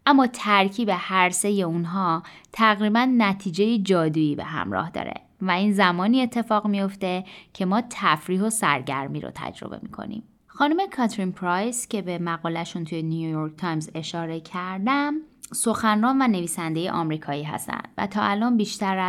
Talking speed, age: 140 wpm, 20-39